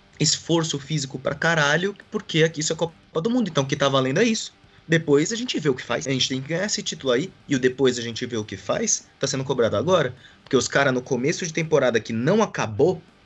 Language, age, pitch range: Portuguese, 20-39, 110-160 Hz